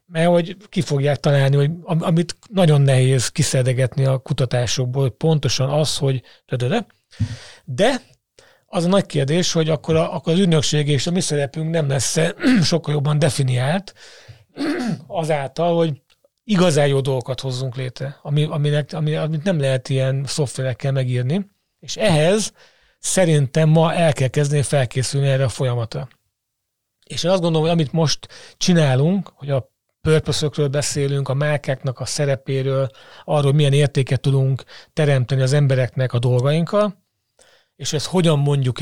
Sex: male